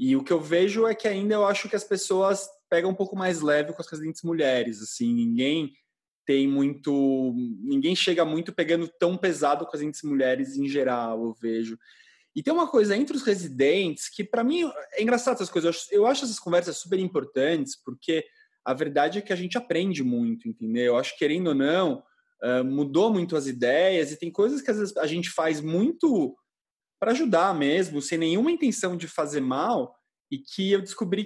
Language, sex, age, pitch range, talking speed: Portuguese, male, 20-39, 145-225 Hz, 200 wpm